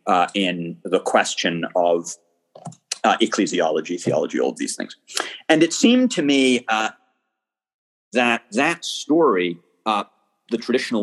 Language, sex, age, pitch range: English, male, 40-59, 95-140 Hz